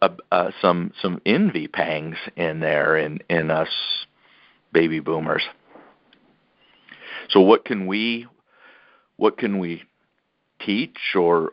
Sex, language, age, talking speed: male, English, 50-69, 115 wpm